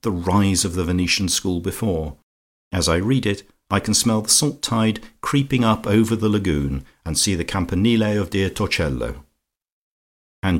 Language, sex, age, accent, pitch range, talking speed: English, male, 50-69, British, 80-110 Hz, 170 wpm